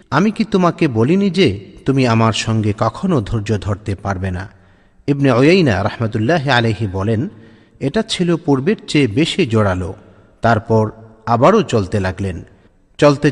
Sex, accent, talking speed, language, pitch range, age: male, native, 125 wpm, Bengali, 105-140 Hz, 50-69